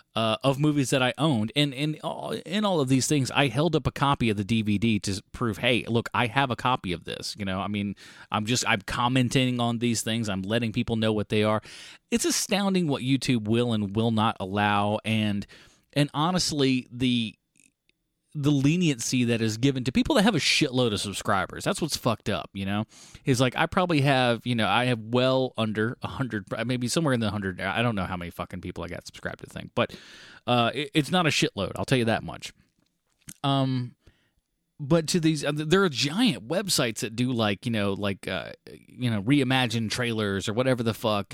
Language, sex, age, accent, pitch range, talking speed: English, male, 30-49, American, 110-140 Hz, 210 wpm